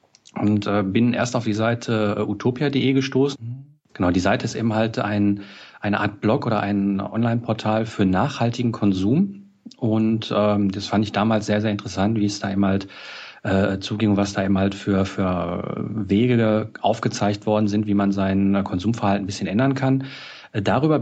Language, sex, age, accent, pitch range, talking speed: German, male, 40-59, German, 105-125 Hz, 170 wpm